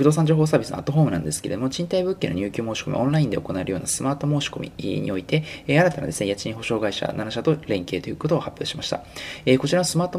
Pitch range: 110-155 Hz